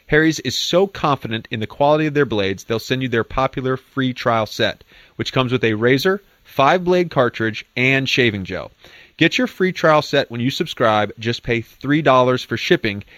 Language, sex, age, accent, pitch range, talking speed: English, male, 30-49, American, 105-130 Hz, 190 wpm